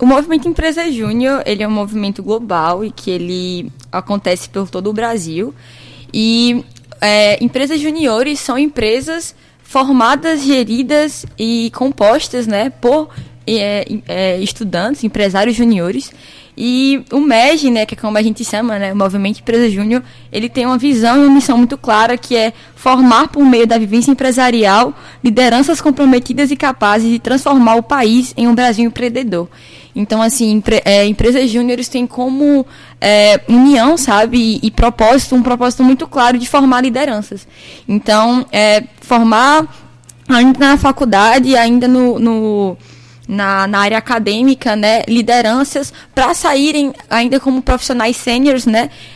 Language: Portuguese